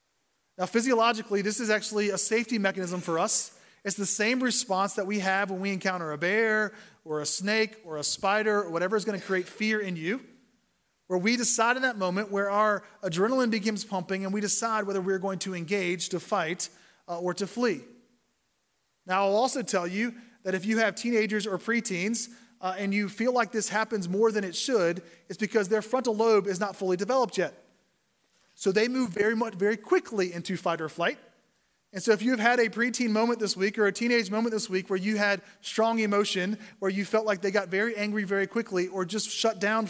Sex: male